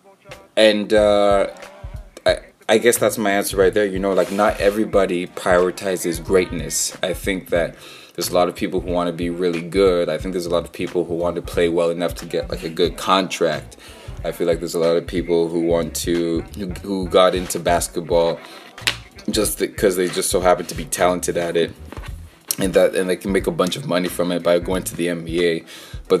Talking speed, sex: 215 wpm, male